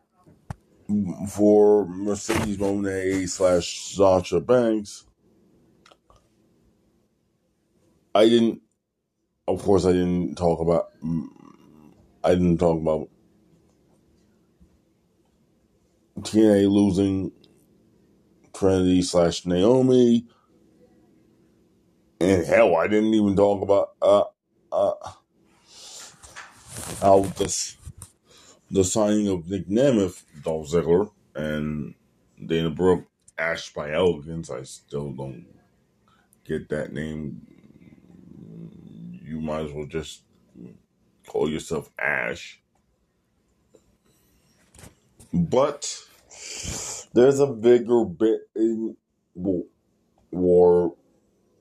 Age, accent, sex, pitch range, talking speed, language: 20-39, American, male, 85-110 Hz, 80 wpm, English